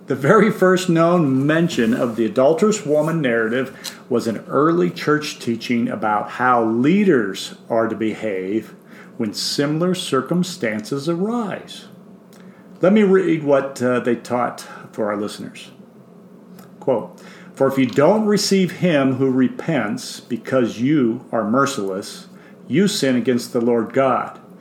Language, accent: English, American